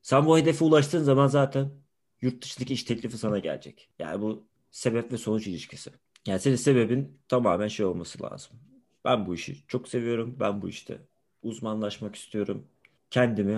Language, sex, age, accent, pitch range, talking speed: Turkish, male, 30-49, native, 100-135 Hz, 160 wpm